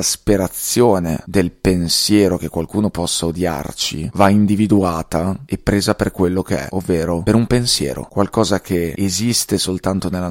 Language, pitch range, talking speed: Italian, 85-100 Hz, 140 wpm